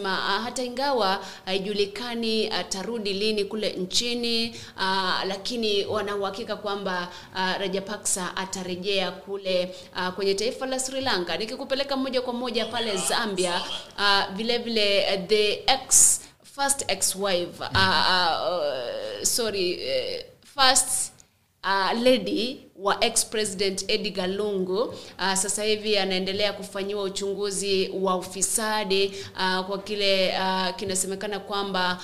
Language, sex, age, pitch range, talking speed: English, female, 30-49, 190-215 Hz, 120 wpm